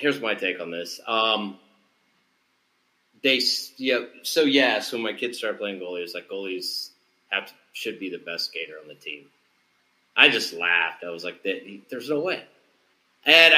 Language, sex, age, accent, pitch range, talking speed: English, male, 30-49, American, 100-125 Hz, 170 wpm